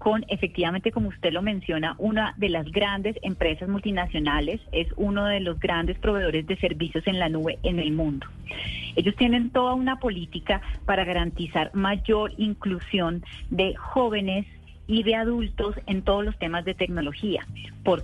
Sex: female